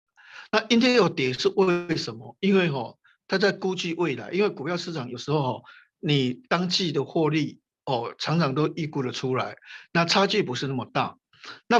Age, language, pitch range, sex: 50-69, Chinese, 135-185 Hz, male